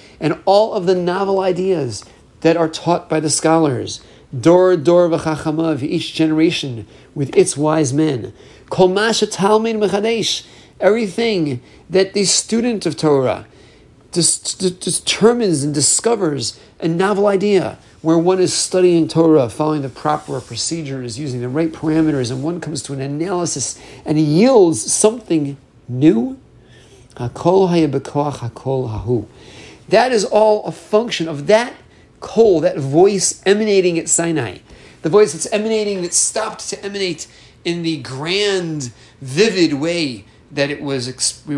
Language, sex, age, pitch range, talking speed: English, male, 50-69, 140-190 Hz, 135 wpm